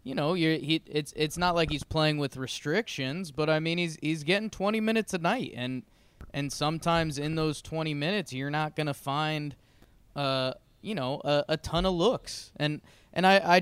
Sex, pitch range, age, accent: male, 130-180 Hz, 20-39, American